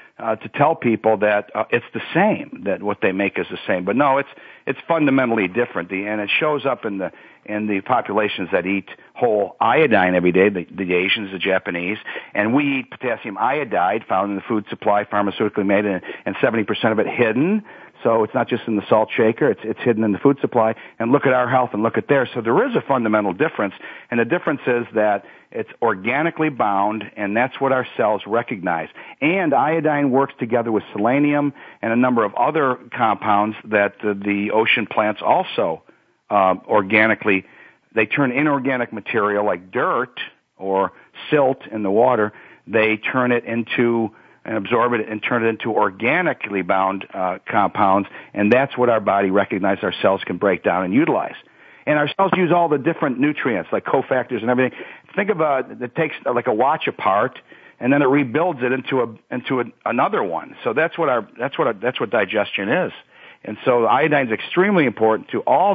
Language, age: English, 50-69